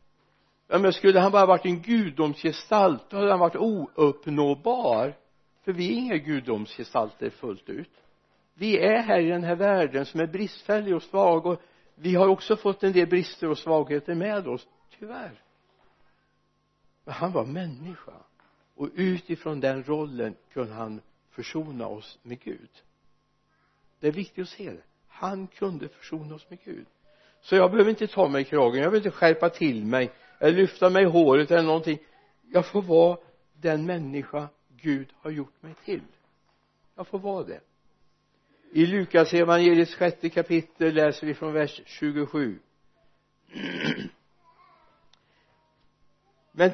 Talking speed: 150 wpm